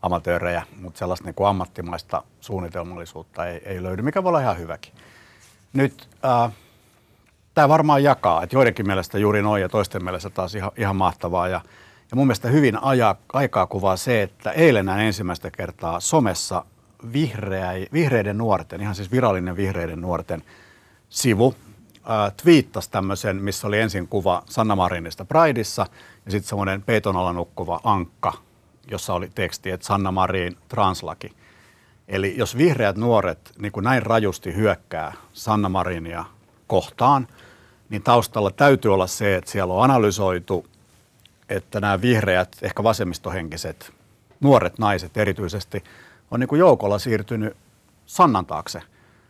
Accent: native